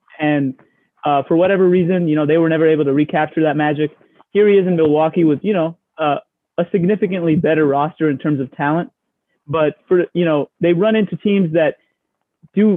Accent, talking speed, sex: American, 195 wpm, male